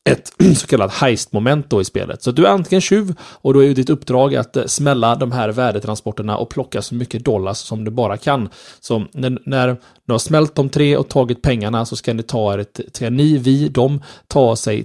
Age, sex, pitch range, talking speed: 20-39, male, 110-135 Hz, 200 wpm